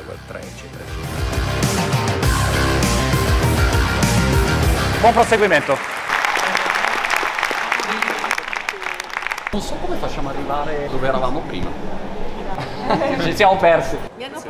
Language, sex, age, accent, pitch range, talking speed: Italian, male, 40-59, native, 95-130 Hz, 65 wpm